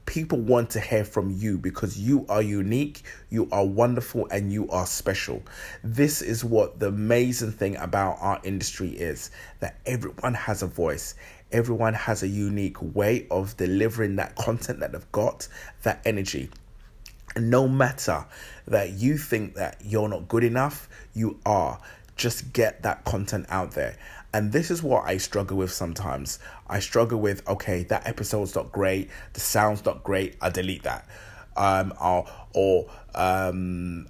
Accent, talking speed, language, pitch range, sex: British, 160 wpm, English, 95-115 Hz, male